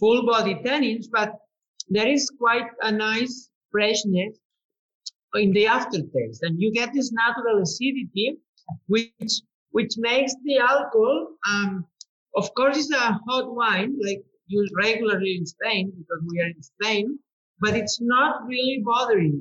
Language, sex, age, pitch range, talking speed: English, male, 50-69, 205-260 Hz, 140 wpm